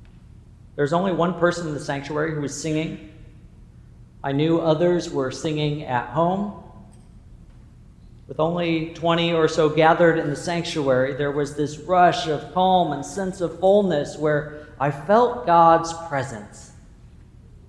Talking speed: 140 wpm